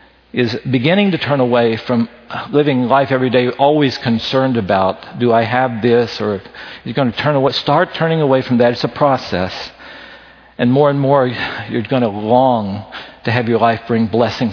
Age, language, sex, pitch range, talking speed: 50-69, English, male, 115-150 Hz, 185 wpm